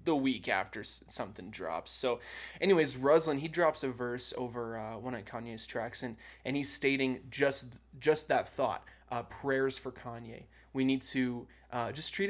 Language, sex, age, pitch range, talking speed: English, male, 20-39, 120-140 Hz, 175 wpm